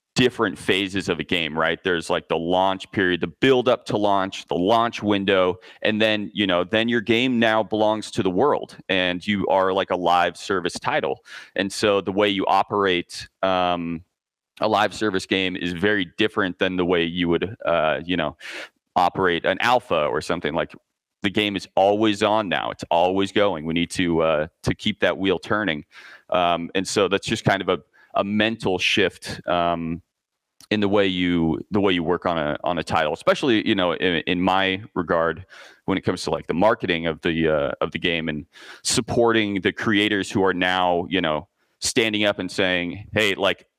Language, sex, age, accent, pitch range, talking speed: English, male, 30-49, American, 90-105 Hz, 200 wpm